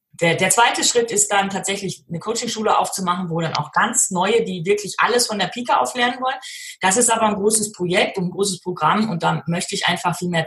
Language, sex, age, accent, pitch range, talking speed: German, female, 30-49, German, 165-220 Hz, 225 wpm